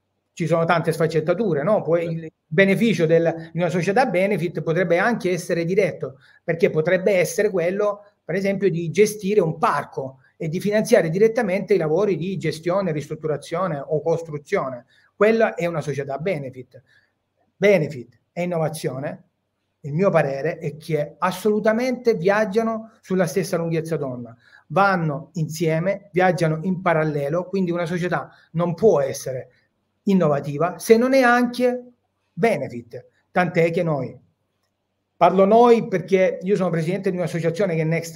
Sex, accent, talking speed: male, native, 135 wpm